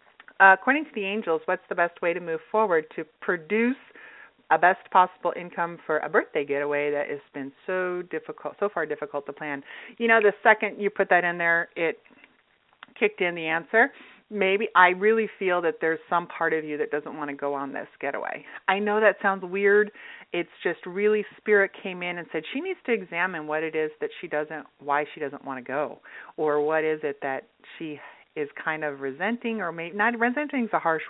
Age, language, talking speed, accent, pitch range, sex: 40-59, English, 210 wpm, American, 165-235 Hz, female